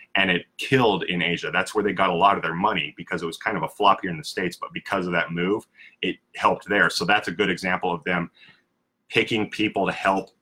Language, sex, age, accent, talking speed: English, male, 30-49, American, 255 wpm